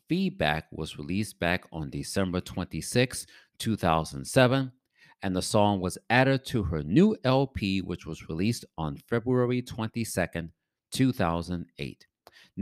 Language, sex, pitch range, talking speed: English, male, 85-130 Hz, 115 wpm